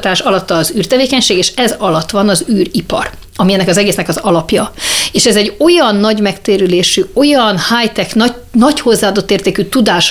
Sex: female